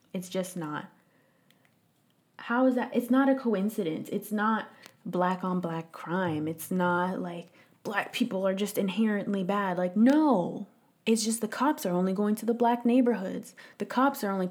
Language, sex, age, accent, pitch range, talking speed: English, female, 20-39, American, 180-215 Hz, 175 wpm